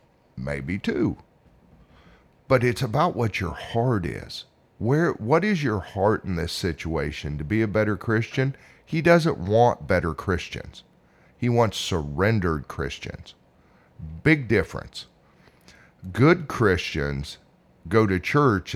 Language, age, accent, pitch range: English, 50-69, American, 85-125 Hz